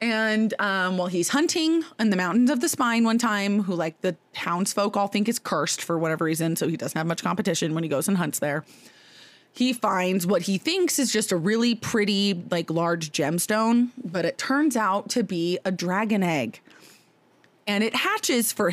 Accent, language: American, English